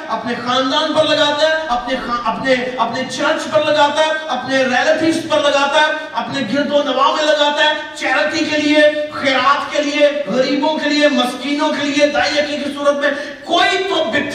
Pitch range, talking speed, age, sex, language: 255-300 Hz, 50 wpm, 40-59, male, Urdu